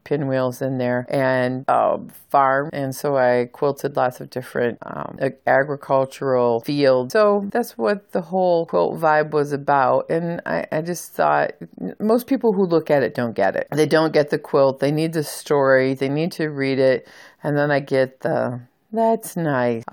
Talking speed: 180 wpm